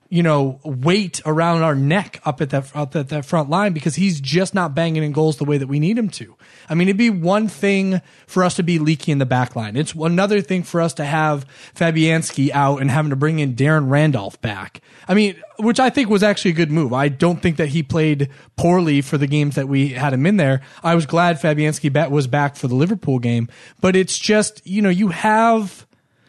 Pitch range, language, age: 140-180 Hz, English, 20-39